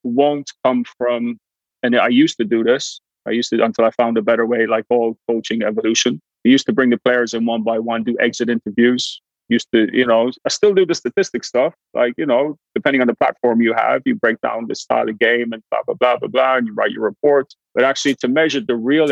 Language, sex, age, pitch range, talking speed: English, male, 30-49, 115-130 Hz, 245 wpm